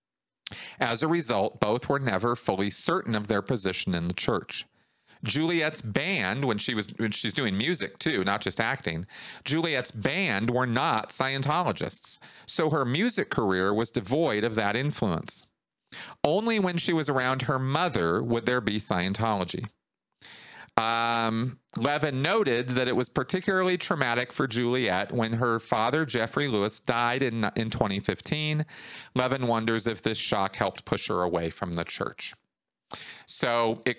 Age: 40-59